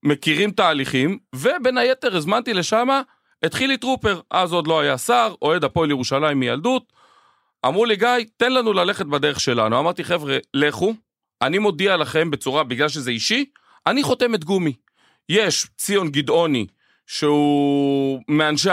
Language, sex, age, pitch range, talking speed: Hebrew, male, 40-59, 135-225 Hz, 140 wpm